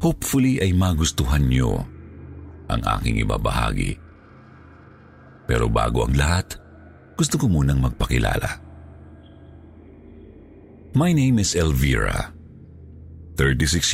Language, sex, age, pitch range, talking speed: Filipino, male, 50-69, 75-95 Hz, 85 wpm